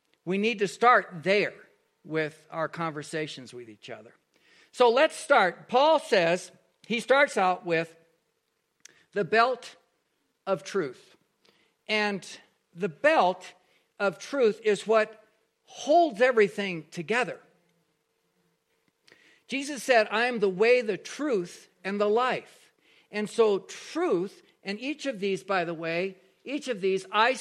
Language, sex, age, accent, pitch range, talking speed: English, male, 60-79, American, 180-240 Hz, 130 wpm